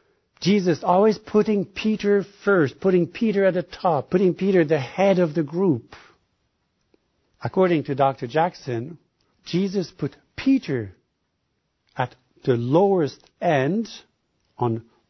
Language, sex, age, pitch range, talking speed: English, male, 60-79, 125-170 Hz, 120 wpm